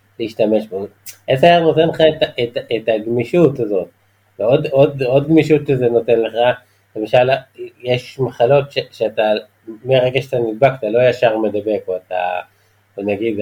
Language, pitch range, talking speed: Hebrew, 105-135 Hz, 140 wpm